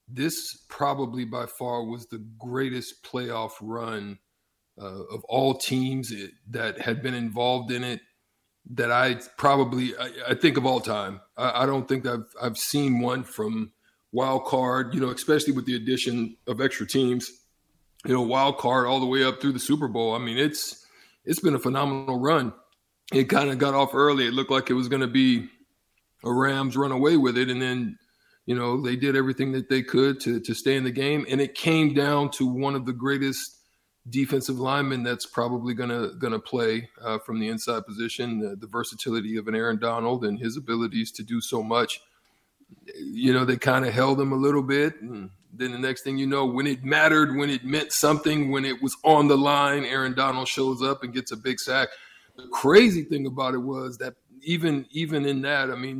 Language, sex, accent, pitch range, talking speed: English, male, American, 120-140 Hz, 205 wpm